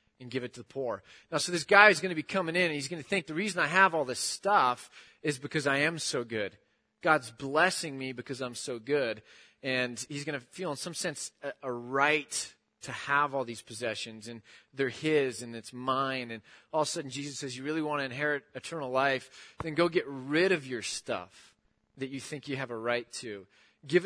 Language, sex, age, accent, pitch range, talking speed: English, male, 30-49, American, 125-160 Hz, 230 wpm